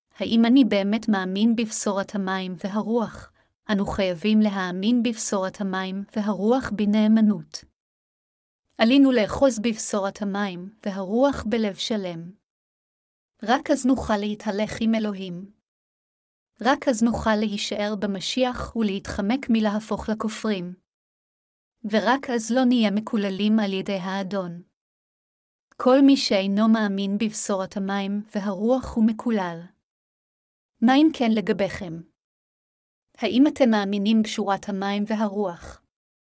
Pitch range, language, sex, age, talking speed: 200-230 Hz, Hebrew, female, 30-49, 100 wpm